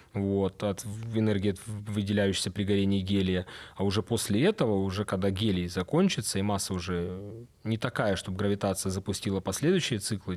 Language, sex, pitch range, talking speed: Russian, male, 95-110 Hz, 135 wpm